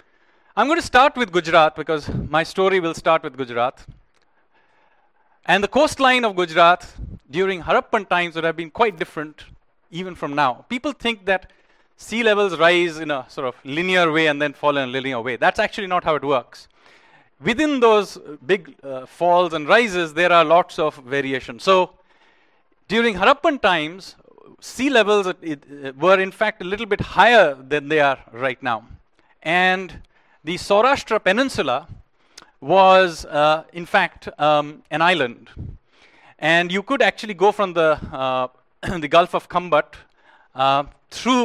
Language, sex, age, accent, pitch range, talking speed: English, male, 40-59, Indian, 150-200 Hz, 160 wpm